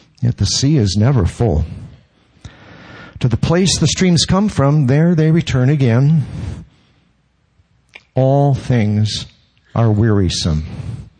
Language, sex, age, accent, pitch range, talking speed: English, male, 50-69, American, 105-145 Hz, 115 wpm